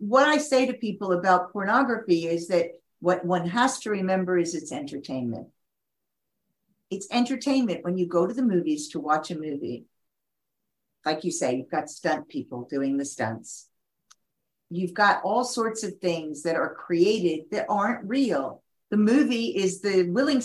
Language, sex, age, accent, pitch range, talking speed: English, female, 50-69, American, 175-230 Hz, 165 wpm